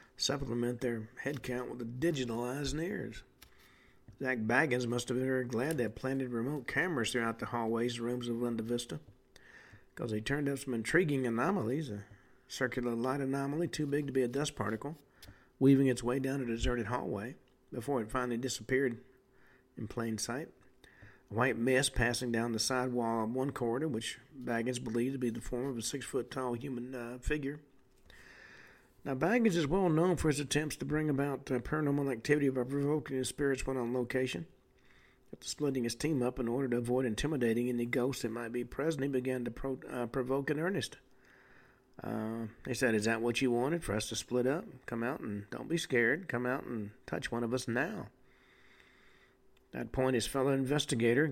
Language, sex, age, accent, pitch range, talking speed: English, male, 50-69, American, 120-135 Hz, 190 wpm